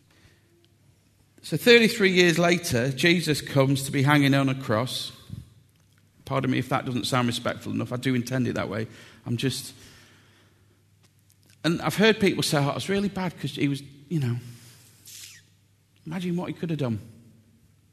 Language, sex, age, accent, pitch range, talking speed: English, male, 40-59, British, 120-170 Hz, 165 wpm